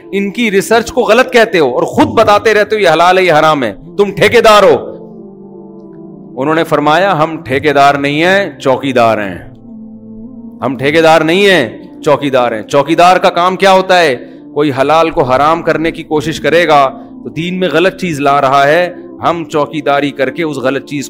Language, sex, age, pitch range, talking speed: Urdu, male, 40-59, 150-190 Hz, 195 wpm